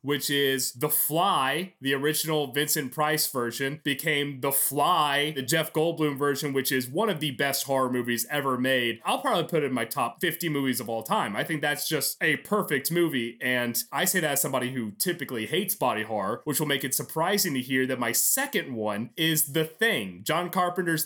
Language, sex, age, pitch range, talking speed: English, male, 30-49, 140-190 Hz, 205 wpm